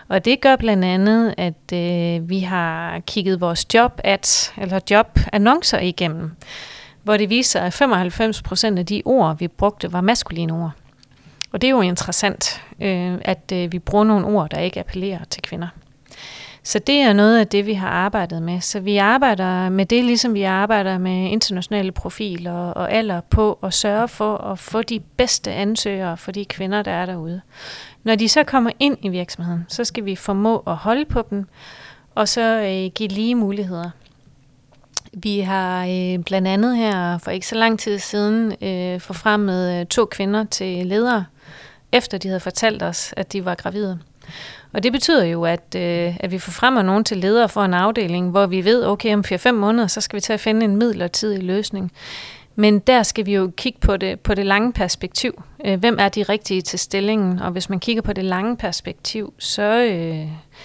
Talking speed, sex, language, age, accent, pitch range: 190 wpm, female, Danish, 30-49, native, 180-215 Hz